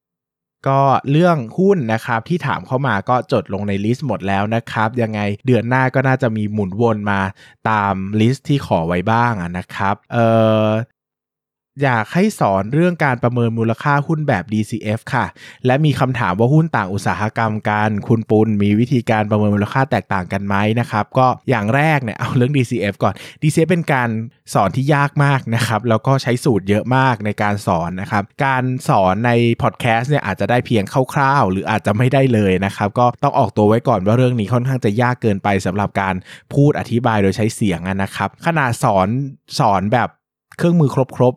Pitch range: 105-135 Hz